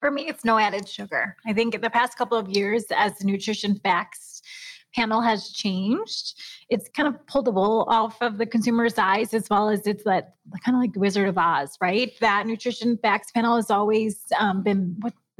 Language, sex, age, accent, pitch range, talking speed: English, female, 20-39, American, 195-235 Hz, 205 wpm